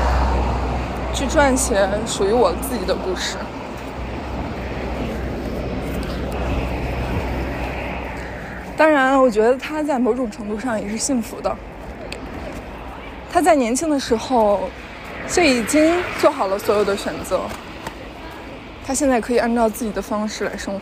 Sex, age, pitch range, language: female, 20-39, 185-260 Hz, Chinese